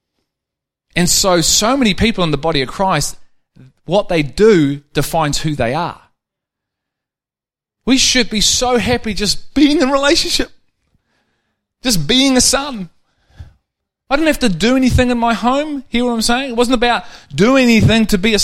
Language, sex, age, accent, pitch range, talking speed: English, male, 30-49, Australian, 165-230 Hz, 170 wpm